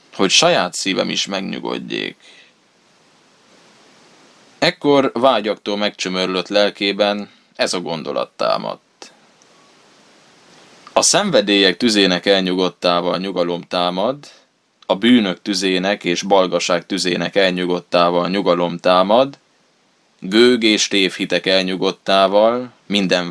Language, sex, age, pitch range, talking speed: Hungarian, male, 20-39, 90-105 Hz, 85 wpm